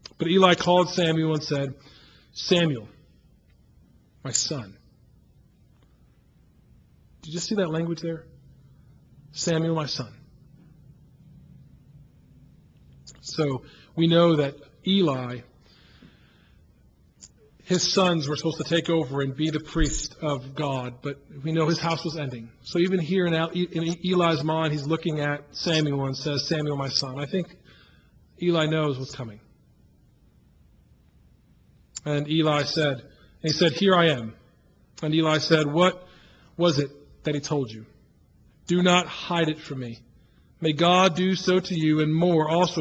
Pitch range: 145-175 Hz